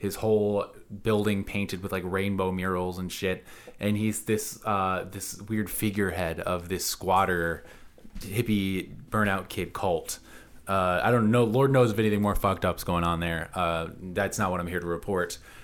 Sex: male